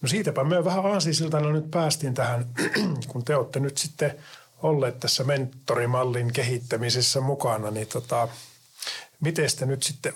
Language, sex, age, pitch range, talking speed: Finnish, male, 50-69, 115-135 Hz, 140 wpm